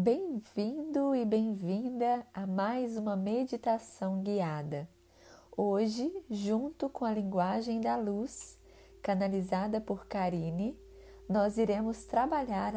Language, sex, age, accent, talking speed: Portuguese, female, 20-39, Brazilian, 100 wpm